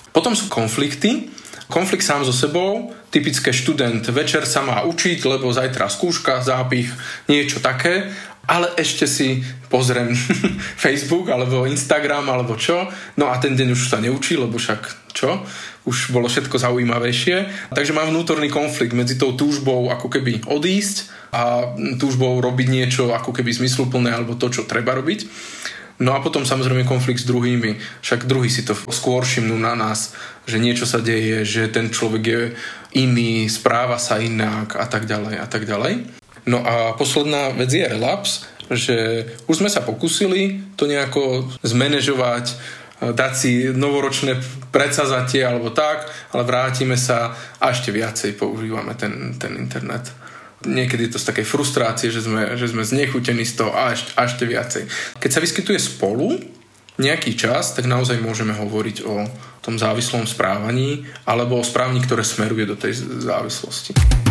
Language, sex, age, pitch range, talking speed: English, male, 20-39, 115-140 Hz, 155 wpm